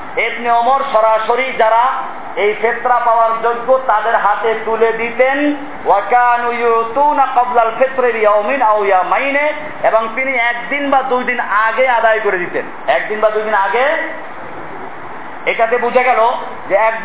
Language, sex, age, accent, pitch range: Bengali, male, 40-59, native, 220-255 Hz